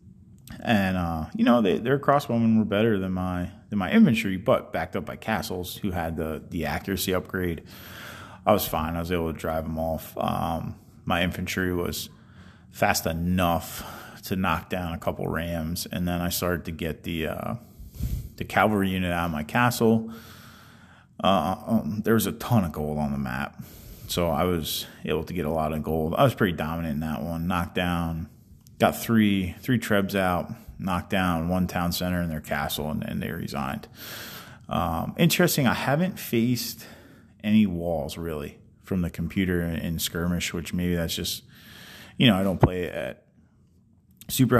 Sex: male